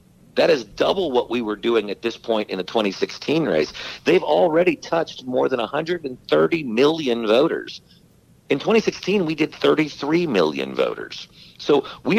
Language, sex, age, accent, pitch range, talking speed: English, male, 50-69, American, 115-190 Hz, 155 wpm